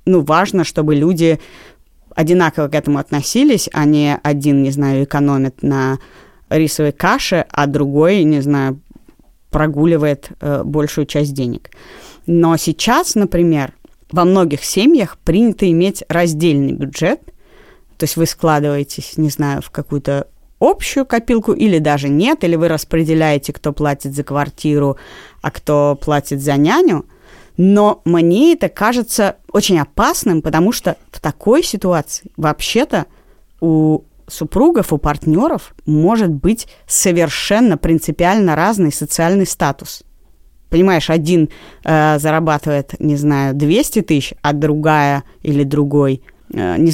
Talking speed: 125 wpm